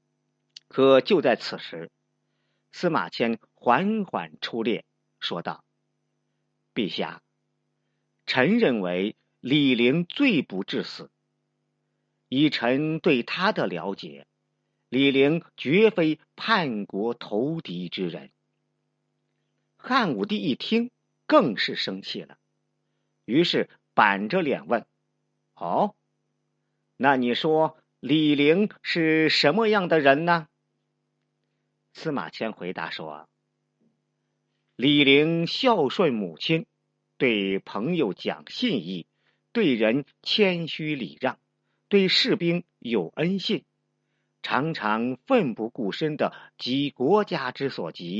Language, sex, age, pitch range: Chinese, male, 50-69, 110-170 Hz